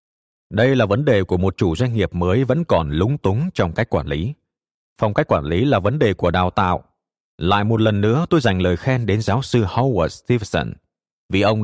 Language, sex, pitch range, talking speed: Vietnamese, male, 95-130 Hz, 220 wpm